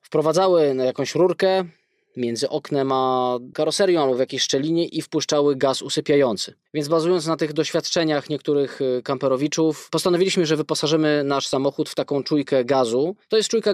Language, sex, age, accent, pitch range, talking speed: Polish, male, 20-39, native, 145-175 Hz, 155 wpm